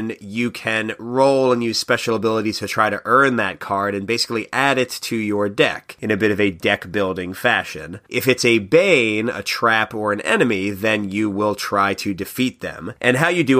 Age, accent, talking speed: 30-49, American, 205 wpm